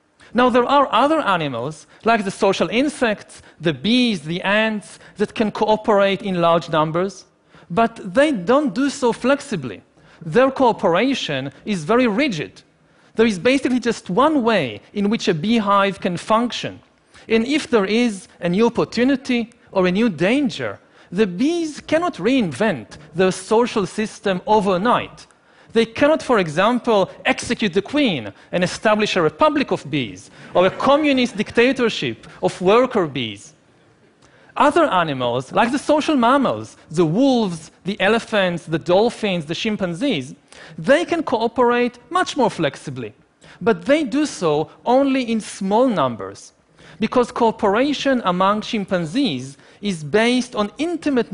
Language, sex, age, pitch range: Chinese, male, 40-59, 180-245 Hz